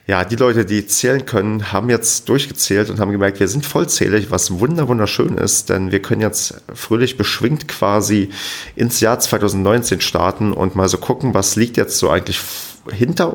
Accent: German